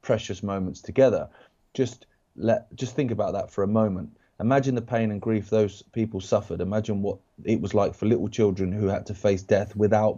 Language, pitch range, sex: English, 95-110 Hz, male